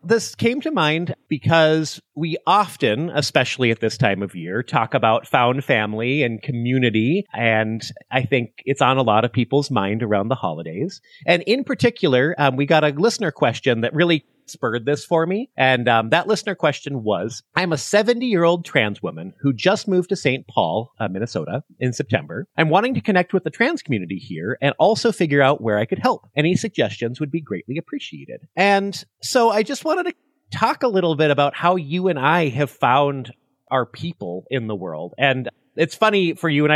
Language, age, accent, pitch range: English, 30-49, American, 120-175 Hz